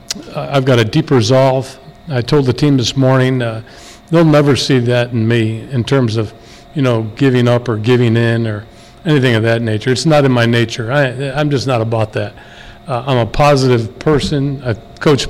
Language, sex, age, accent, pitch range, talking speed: English, male, 50-69, American, 115-145 Hz, 195 wpm